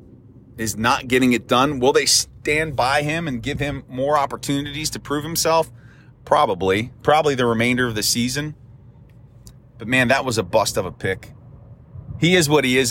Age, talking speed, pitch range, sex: 30-49, 180 wpm, 115-145 Hz, male